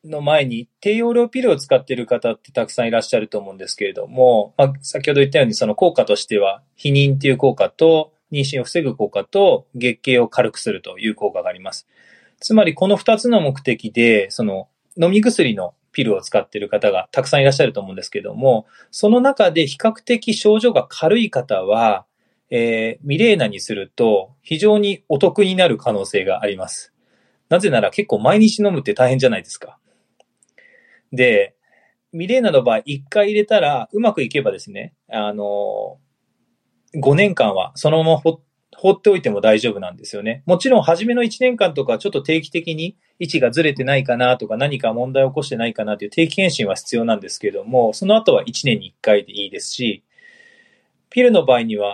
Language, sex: Japanese, male